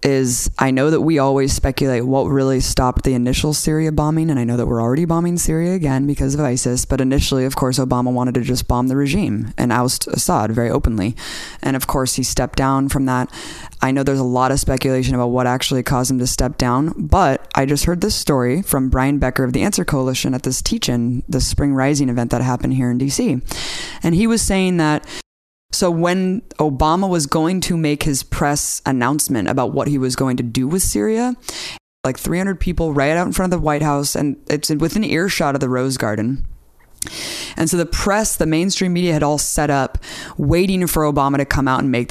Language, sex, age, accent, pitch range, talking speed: English, female, 20-39, American, 130-160 Hz, 215 wpm